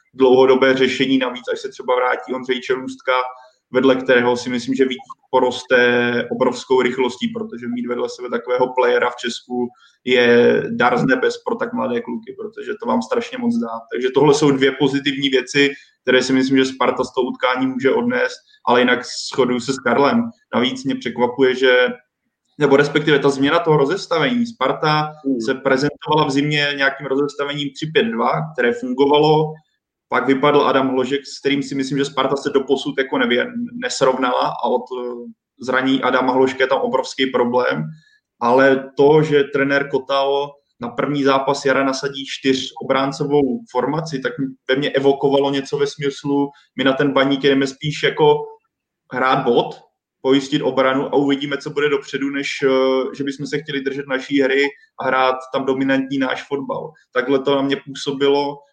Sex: male